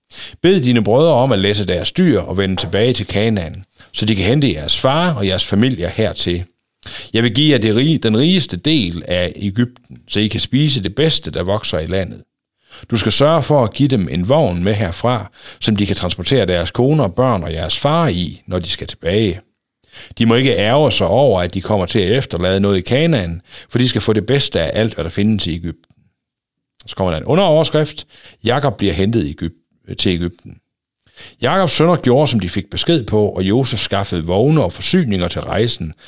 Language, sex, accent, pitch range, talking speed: Danish, male, native, 95-130 Hz, 205 wpm